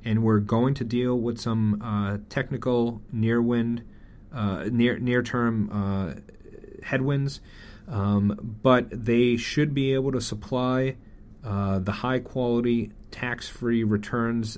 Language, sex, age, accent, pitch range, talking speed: English, male, 30-49, American, 100-115 Hz, 115 wpm